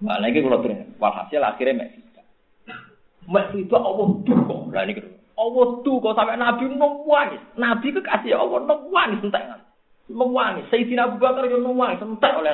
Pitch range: 160-240 Hz